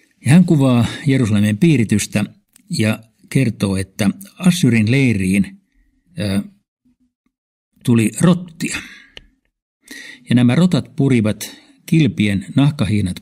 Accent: native